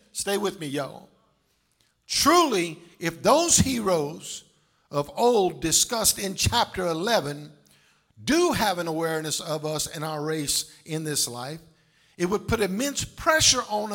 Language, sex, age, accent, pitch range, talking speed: English, male, 50-69, American, 170-220 Hz, 140 wpm